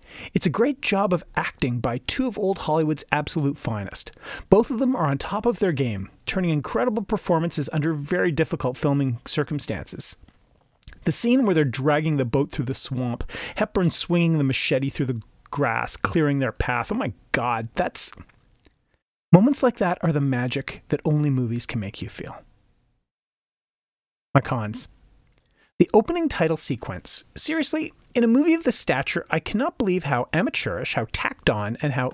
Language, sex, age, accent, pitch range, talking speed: English, male, 30-49, American, 130-205 Hz, 170 wpm